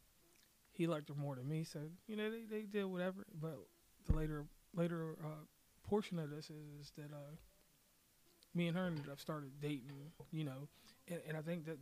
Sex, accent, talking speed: male, American, 195 wpm